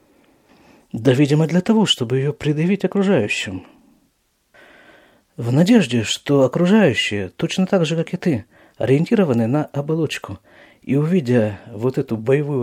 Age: 50-69